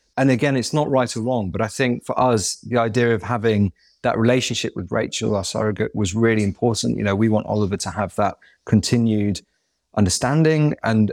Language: English